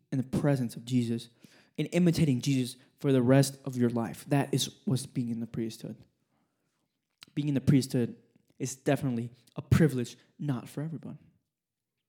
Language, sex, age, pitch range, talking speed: English, male, 20-39, 125-155 Hz, 160 wpm